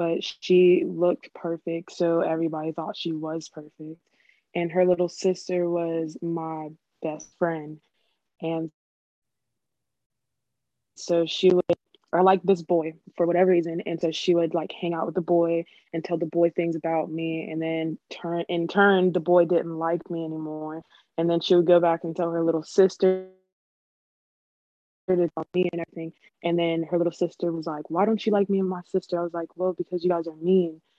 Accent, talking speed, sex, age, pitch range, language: American, 185 wpm, female, 20-39, 160-180 Hz, English